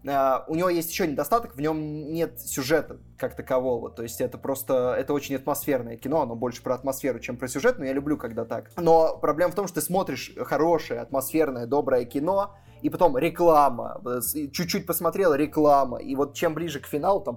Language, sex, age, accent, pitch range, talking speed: Russian, male, 20-39, native, 125-160 Hz, 195 wpm